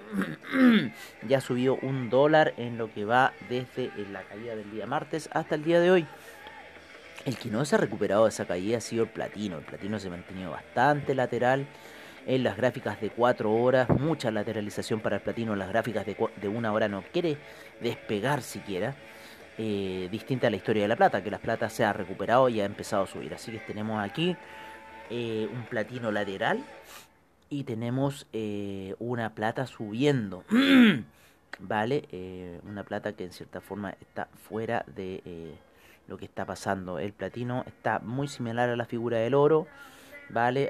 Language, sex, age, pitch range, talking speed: Spanish, male, 30-49, 100-130 Hz, 180 wpm